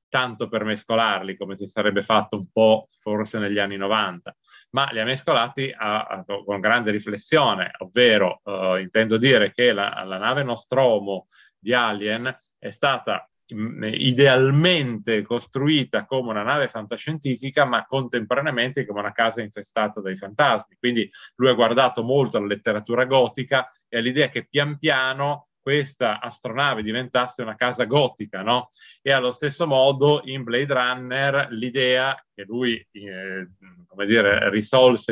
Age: 30-49